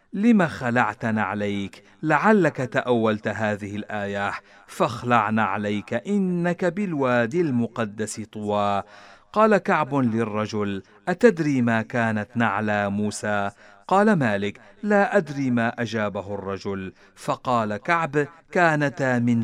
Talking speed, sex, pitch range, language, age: 100 wpm, male, 105-145 Hz, Arabic, 40-59